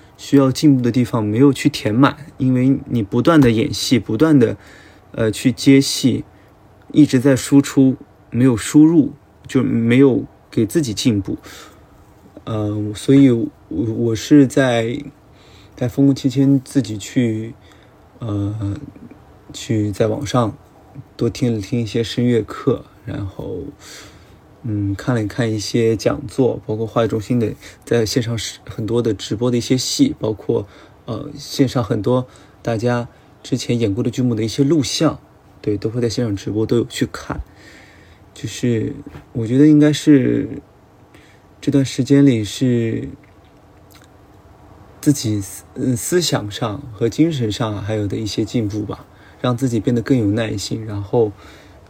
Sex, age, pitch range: male, 20-39, 105-135 Hz